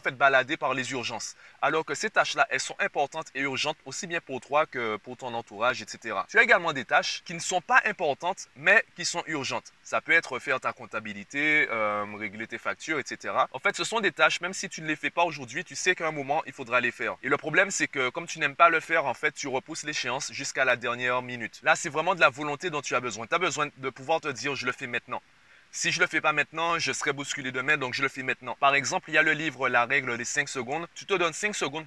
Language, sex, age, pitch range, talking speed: French, male, 20-39, 130-165 Hz, 275 wpm